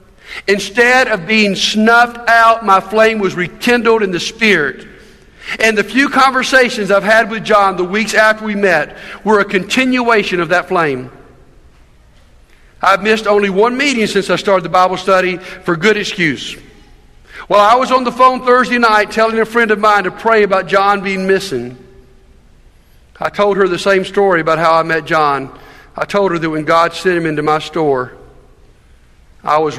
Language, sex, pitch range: English, male, 135-200 Hz